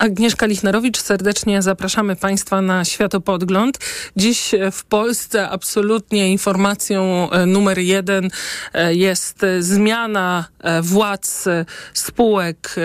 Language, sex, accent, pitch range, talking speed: Polish, male, native, 190-225 Hz, 85 wpm